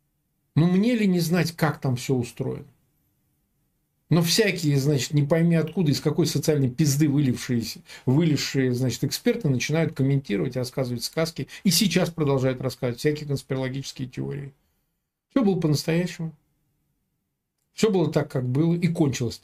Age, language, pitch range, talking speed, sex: 40-59, Russian, 125-160 Hz, 135 wpm, male